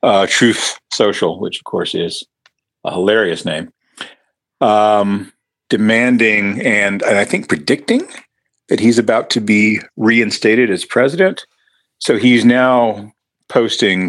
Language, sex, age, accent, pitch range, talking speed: English, male, 50-69, American, 90-110 Hz, 125 wpm